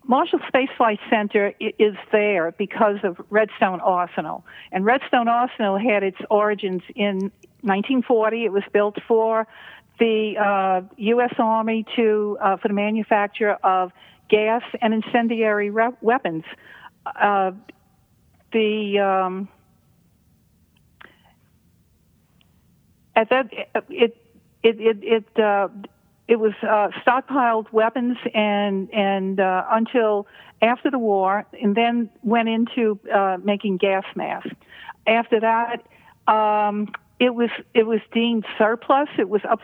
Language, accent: English, American